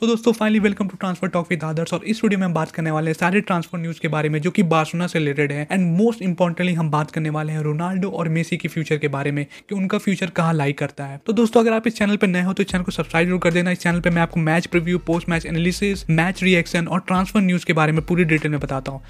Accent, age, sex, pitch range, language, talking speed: native, 20-39, male, 165-200 Hz, Hindi, 290 wpm